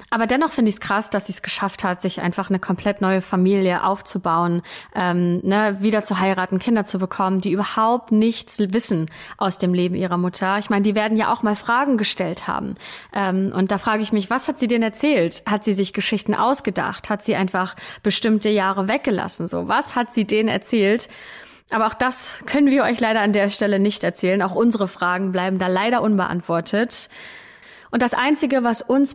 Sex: female